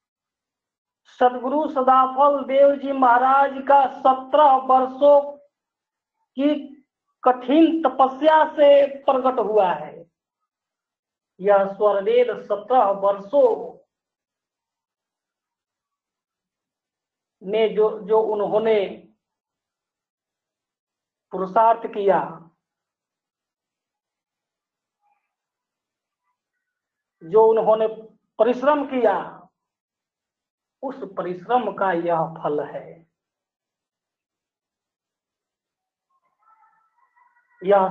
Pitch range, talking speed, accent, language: 200-300 Hz, 55 wpm, native, Hindi